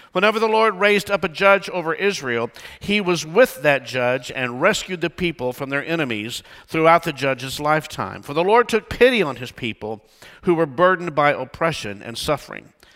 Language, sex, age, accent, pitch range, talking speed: English, male, 50-69, American, 125-185 Hz, 185 wpm